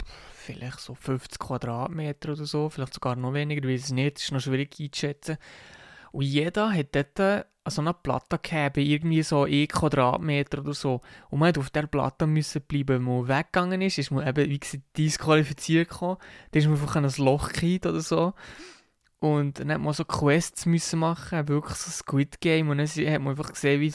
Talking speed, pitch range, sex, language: 195 wpm, 135-160 Hz, male, German